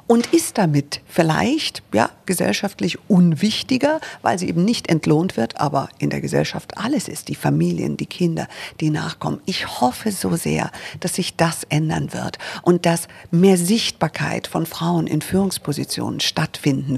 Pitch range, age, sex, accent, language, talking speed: 150-215 Hz, 50-69, female, German, German, 150 wpm